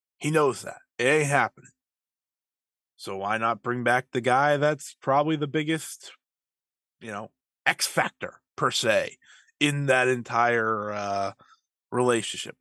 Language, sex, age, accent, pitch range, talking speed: English, male, 20-39, American, 120-185 Hz, 135 wpm